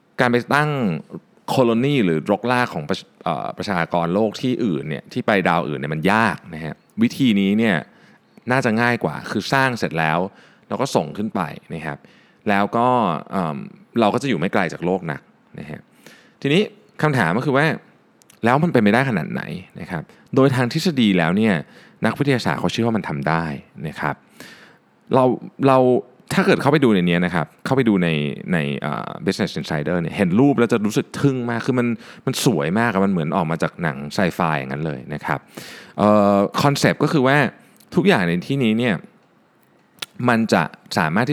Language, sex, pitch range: Thai, male, 85-125 Hz